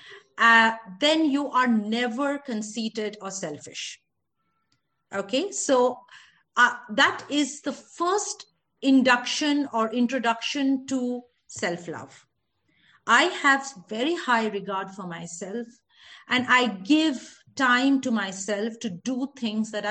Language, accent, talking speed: English, Indian, 110 wpm